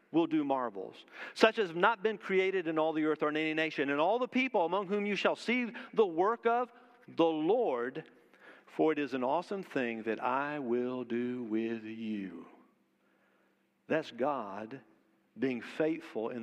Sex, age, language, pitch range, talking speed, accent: male, 50-69, English, 140-225 Hz, 175 wpm, American